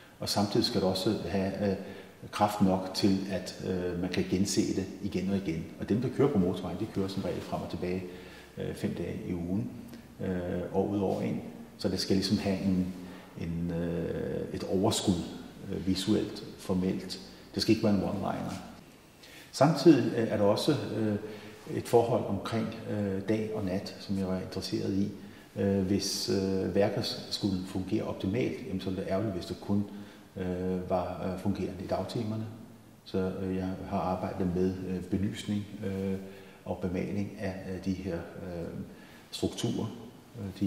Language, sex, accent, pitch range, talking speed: Danish, male, native, 95-105 Hz, 160 wpm